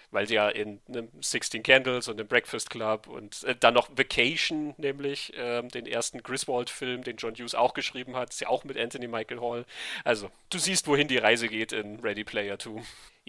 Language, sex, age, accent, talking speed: German, male, 40-59, German, 210 wpm